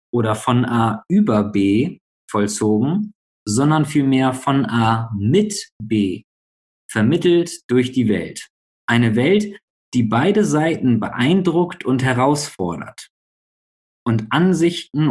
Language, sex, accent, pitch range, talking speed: German, male, German, 115-150 Hz, 105 wpm